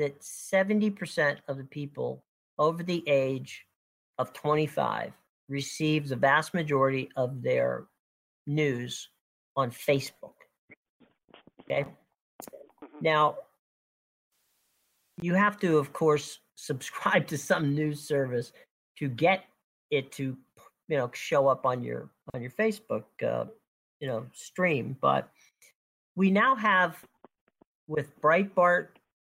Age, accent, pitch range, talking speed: 50-69, American, 135-160 Hz, 110 wpm